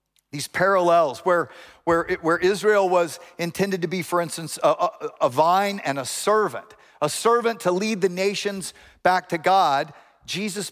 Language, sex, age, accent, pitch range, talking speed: English, male, 50-69, American, 165-205 Hz, 155 wpm